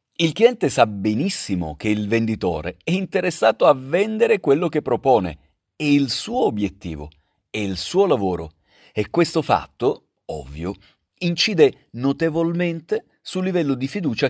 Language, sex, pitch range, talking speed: Italian, male, 95-150 Hz, 135 wpm